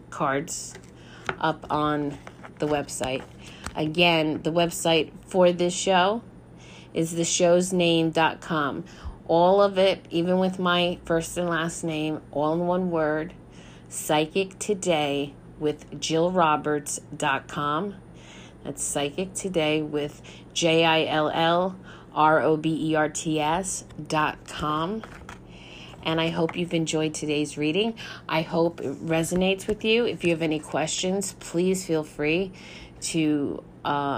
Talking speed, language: 105 wpm, English